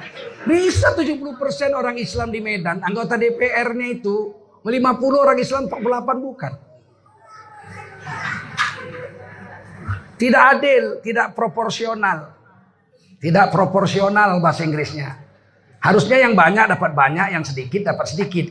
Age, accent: 40-59, native